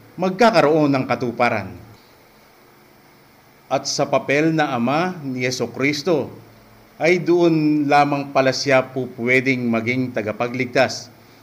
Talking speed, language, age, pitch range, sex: 105 wpm, English, 50-69, 115-150 Hz, male